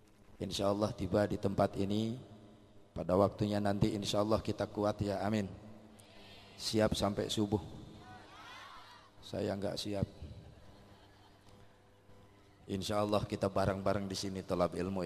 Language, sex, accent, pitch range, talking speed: Indonesian, male, native, 95-105 Hz, 105 wpm